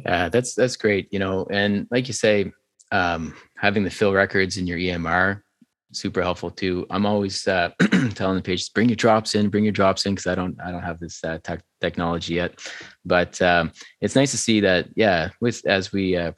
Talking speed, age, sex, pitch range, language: 215 wpm, 20-39, male, 85-100 Hz, English